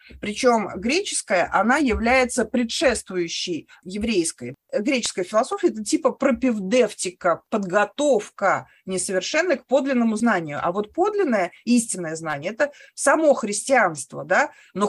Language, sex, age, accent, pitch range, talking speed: Russian, female, 30-49, native, 185-275 Hz, 105 wpm